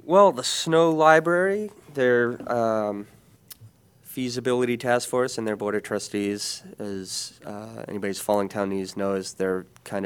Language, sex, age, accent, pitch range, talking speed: English, male, 30-49, American, 95-115 Hz, 135 wpm